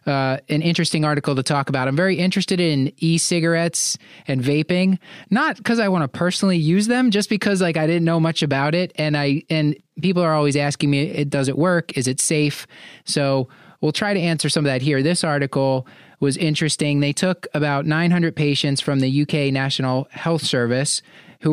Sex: male